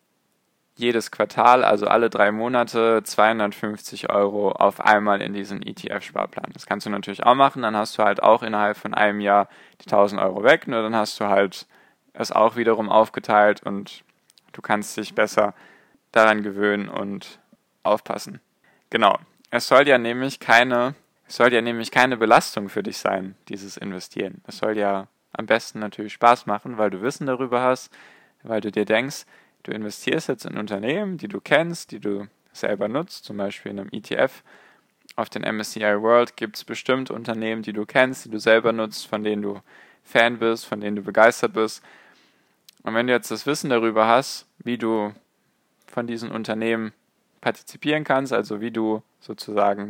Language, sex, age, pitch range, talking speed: German, male, 10-29, 105-120 Hz, 175 wpm